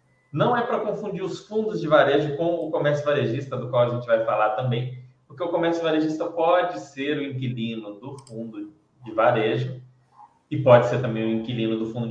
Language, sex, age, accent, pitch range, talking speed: Portuguese, male, 20-39, Brazilian, 110-140 Hz, 195 wpm